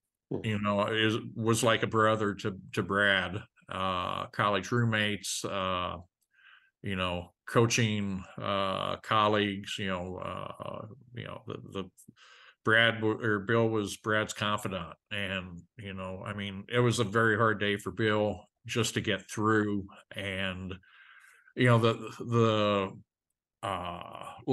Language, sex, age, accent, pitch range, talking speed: English, male, 50-69, American, 100-115 Hz, 135 wpm